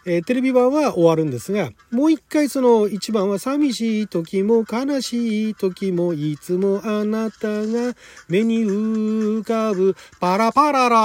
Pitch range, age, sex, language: 170-255 Hz, 40-59, male, Japanese